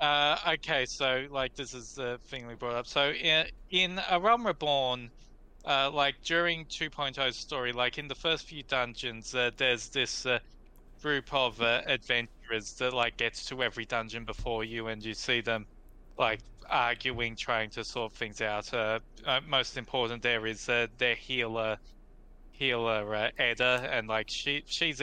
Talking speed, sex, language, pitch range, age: 175 wpm, male, English, 120-150 Hz, 20-39